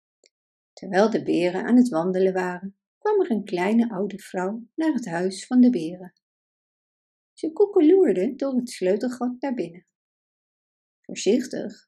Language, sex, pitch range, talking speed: Dutch, female, 200-295 Hz, 135 wpm